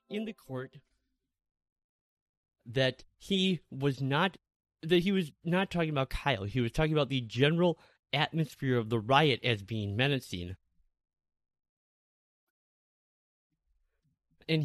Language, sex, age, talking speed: English, male, 30-49, 115 wpm